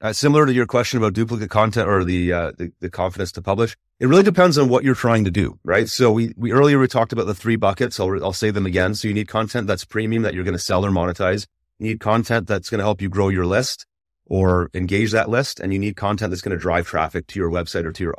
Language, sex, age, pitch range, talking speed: English, male, 30-49, 95-120 Hz, 280 wpm